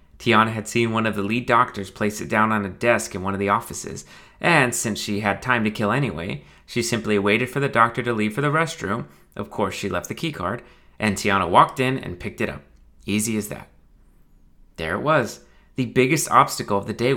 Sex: male